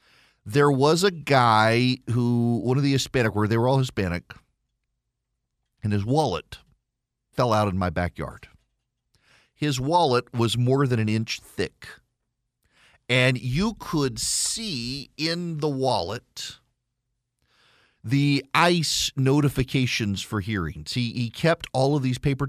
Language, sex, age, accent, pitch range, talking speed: English, male, 40-59, American, 115-145 Hz, 130 wpm